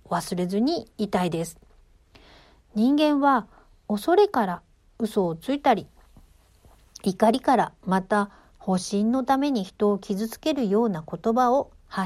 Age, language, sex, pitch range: 50-69, Japanese, female, 185-260 Hz